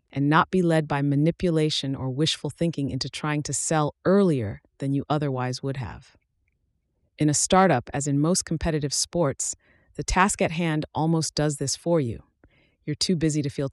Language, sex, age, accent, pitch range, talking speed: English, female, 30-49, American, 135-165 Hz, 180 wpm